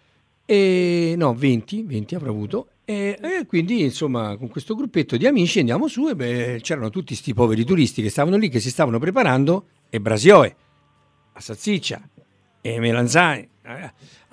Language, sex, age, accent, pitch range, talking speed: Italian, male, 50-69, native, 115-175 Hz, 160 wpm